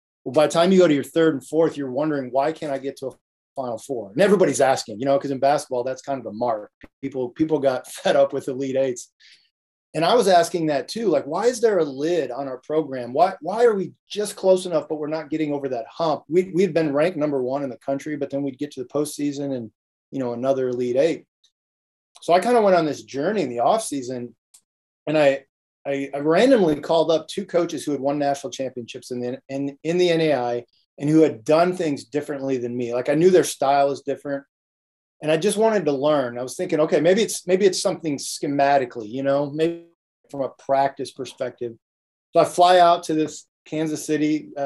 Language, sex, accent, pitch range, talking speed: English, male, American, 130-160 Hz, 230 wpm